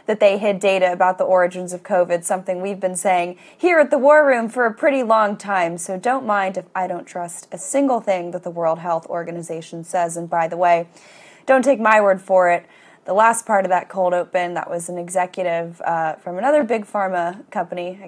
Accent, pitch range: American, 180-245 Hz